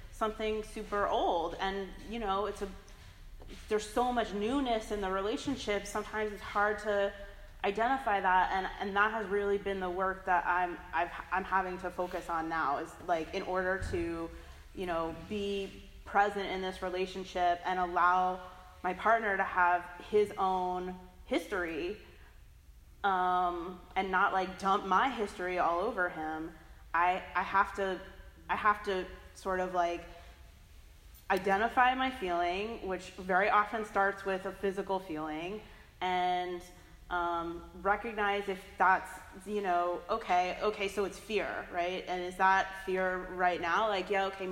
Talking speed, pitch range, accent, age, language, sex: 150 wpm, 180-205 Hz, American, 20-39, English, female